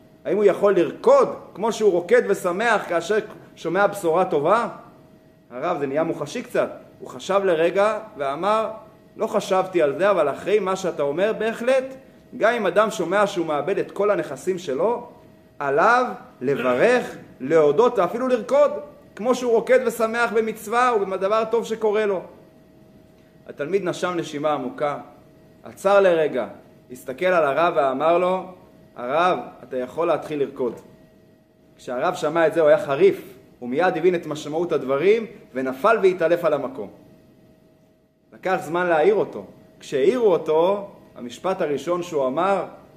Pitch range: 165-225 Hz